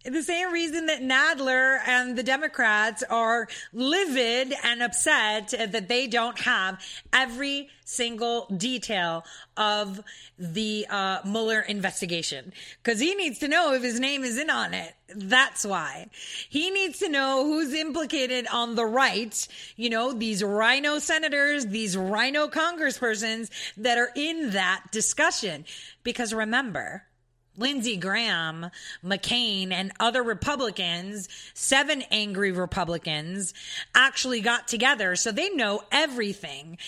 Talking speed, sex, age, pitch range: 125 wpm, female, 30-49, 205-275 Hz